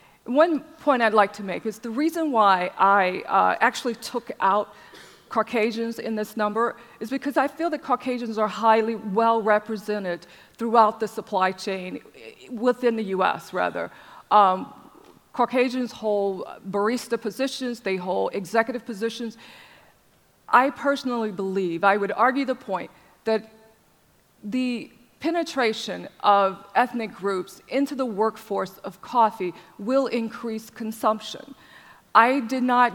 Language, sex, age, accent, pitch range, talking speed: English, female, 40-59, American, 200-240 Hz, 125 wpm